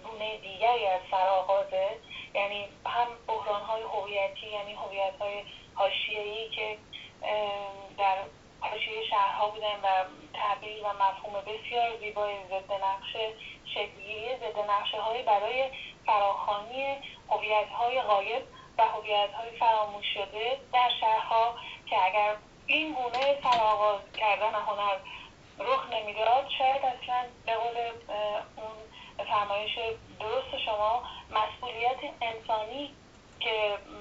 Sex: female